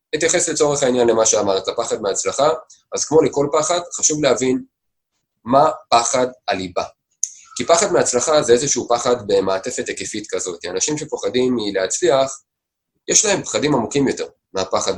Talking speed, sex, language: 135 wpm, male, Hebrew